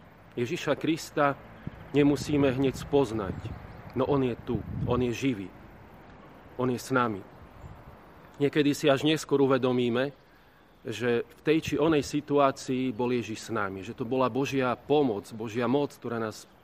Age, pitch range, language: 40-59, 110-135 Hz, Slovak